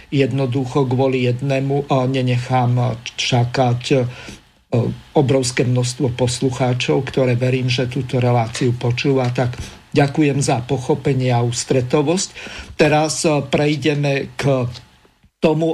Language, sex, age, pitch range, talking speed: Slovak, male, 50-69, 130-150 Hz, 100 wpm